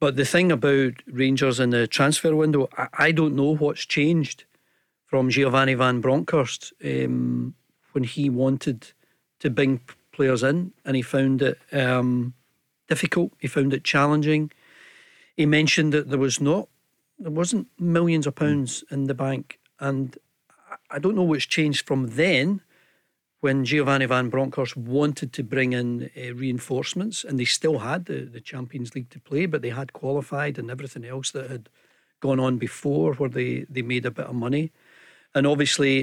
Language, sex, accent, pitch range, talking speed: English, male, British, 130-155 Hz, 165 wpm